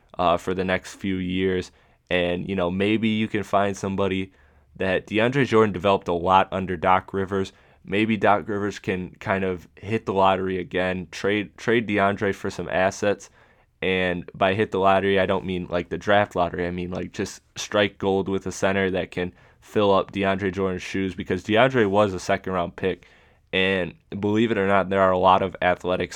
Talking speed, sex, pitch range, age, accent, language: 195 wpm, male, 90-100 Hz, 20-39, American, English